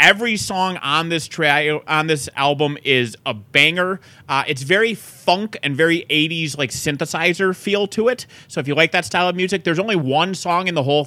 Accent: American